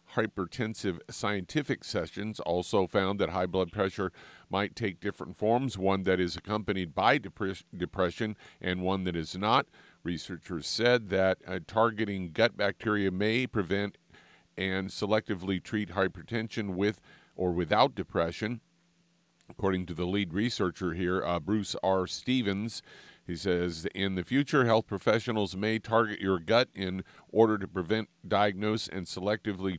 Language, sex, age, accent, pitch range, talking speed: English, male, 50-69, American, 90-110 Hz, 140 wpm